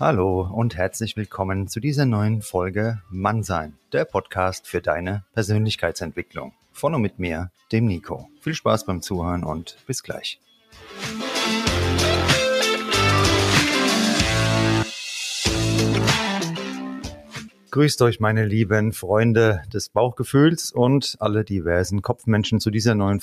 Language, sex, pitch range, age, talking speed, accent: German, male, 95-120 Hz, 30-49, 105 wpm, German